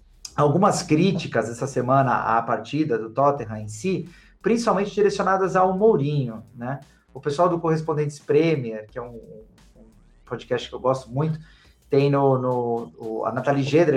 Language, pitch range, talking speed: Portuguese, 125-160 Hz, 155 wpm